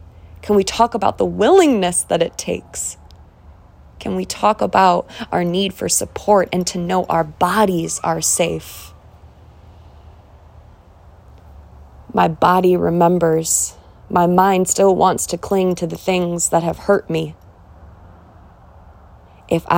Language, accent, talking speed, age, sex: English, American, 125 wpm, 20-39, female